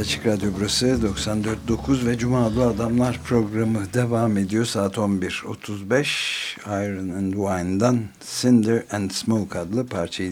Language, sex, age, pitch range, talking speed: Turkish, male, 60-79, 90-115 Hz, 115 wpm